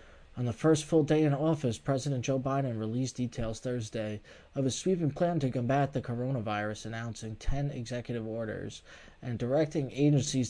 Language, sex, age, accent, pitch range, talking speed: English, male, 20-39, American, 115-150 Hz, 160 wpm